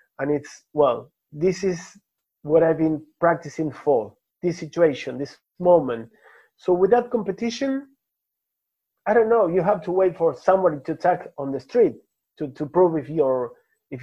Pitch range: 150-205 Hz